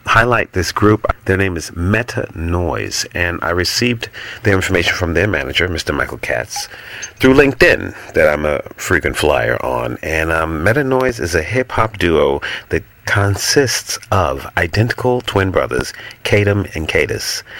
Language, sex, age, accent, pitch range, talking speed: English, male, 40-59, American, 80-110 Hz, 145 wpm